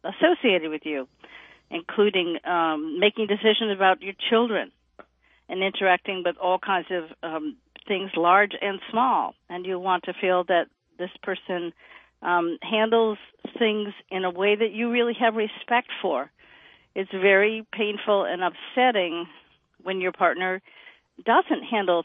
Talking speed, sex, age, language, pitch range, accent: 140 wpm, female, 50-69, English, 180-225 Hz, American